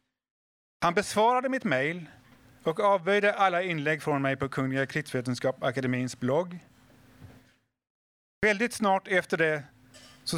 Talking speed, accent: 110 wpm, native